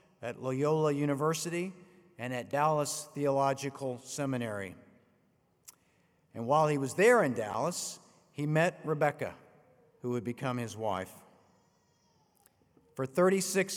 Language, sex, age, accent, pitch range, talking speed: English, male, 50-69, American, 130-170 Hz, 110 wpm